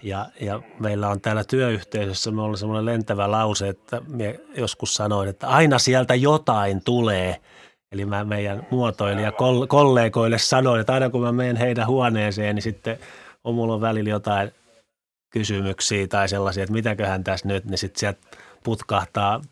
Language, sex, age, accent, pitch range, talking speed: Finnish, male, 30-49, native, 100-115 Hz, 155 wpm